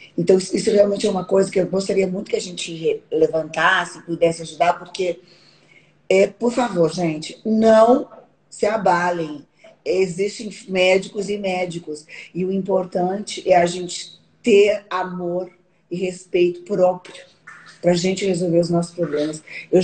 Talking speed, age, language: 140 wpm, 20-39, Portuguese